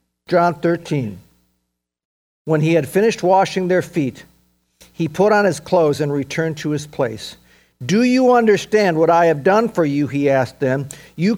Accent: American